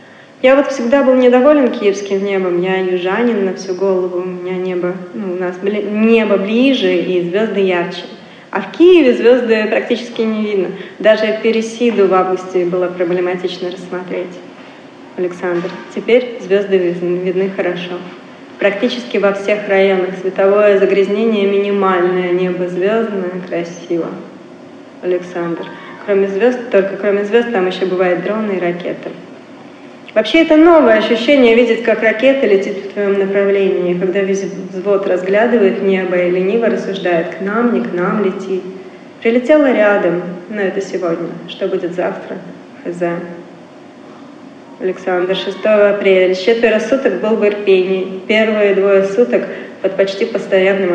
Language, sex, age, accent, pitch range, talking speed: Russian, female, 30-49, native, 185-220 Hz, 135 wpm